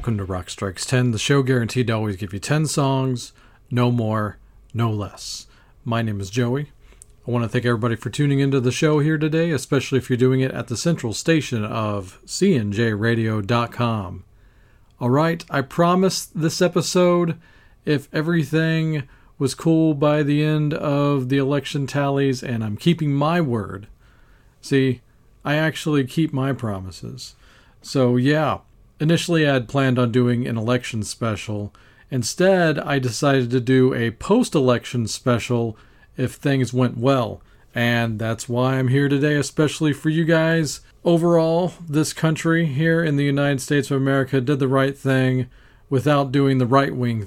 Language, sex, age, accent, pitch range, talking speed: English, male, 40-59, American, 115-150 Hz, 160 wpm